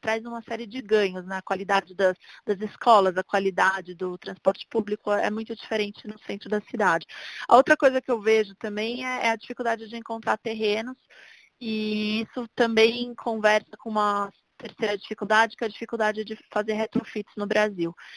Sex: female